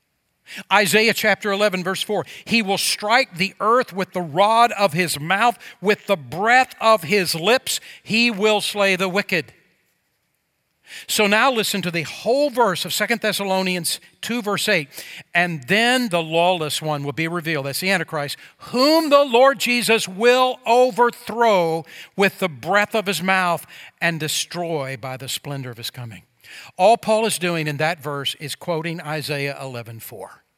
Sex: male